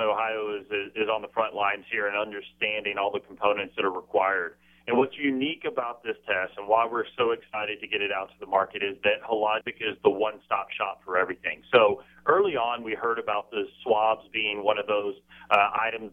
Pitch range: 105-140 Hz